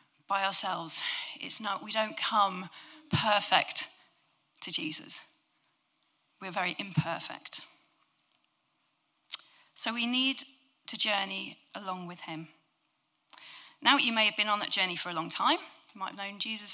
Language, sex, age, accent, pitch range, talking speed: English, female, 30-49, British, 190-255 Hz, 135 wpm